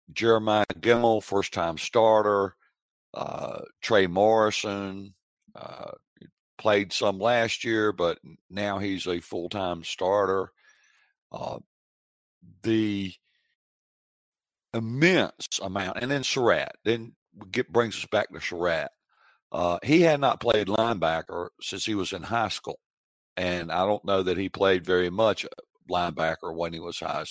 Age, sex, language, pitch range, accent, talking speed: 60-79, male, English, 90-115 Hz, American, 125 wpm